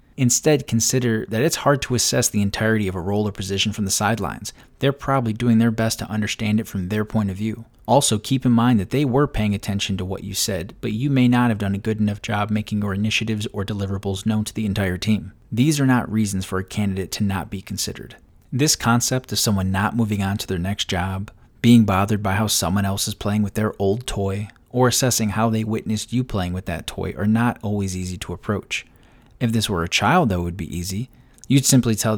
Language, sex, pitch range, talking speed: English, male, 100-120 Hz, 235 wpm